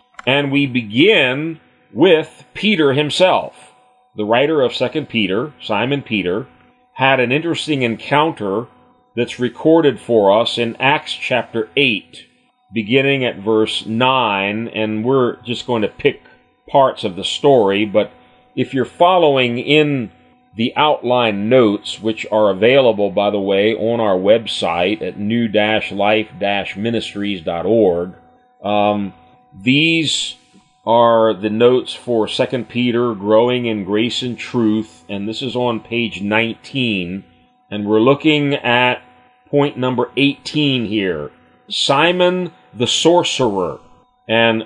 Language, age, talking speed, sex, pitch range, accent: English, 40-59, 120 wpm, male, 105-140 Hz, American